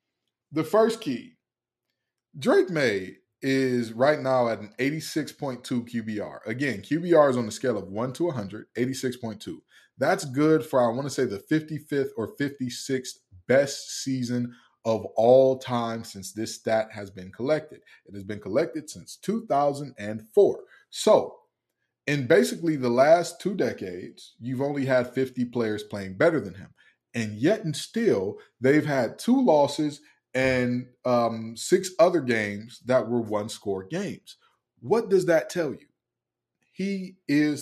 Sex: male